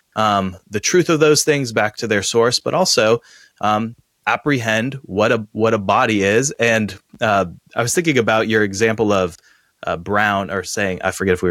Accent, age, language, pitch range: American, 20-39, English, 100-135 Hz